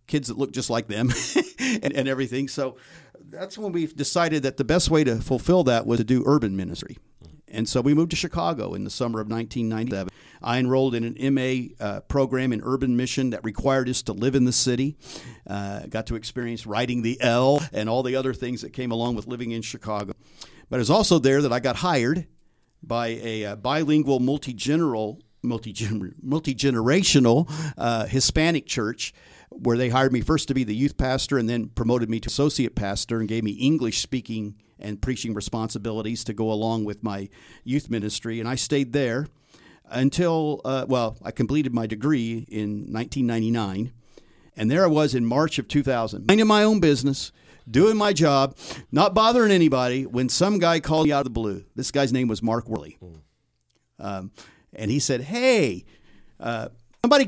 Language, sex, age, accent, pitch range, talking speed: English, male, 50-69, American, 115-145 Hz, 185 wpm